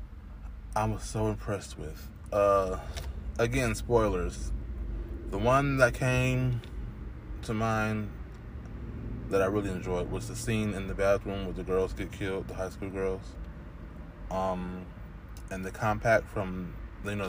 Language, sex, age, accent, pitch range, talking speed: English, male, 20-39, American, 90-115 Hz, 140 wpm